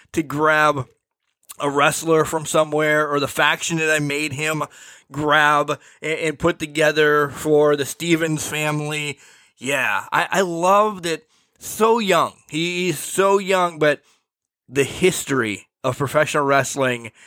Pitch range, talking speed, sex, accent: 140-170 Hz, 130 wpm, male, American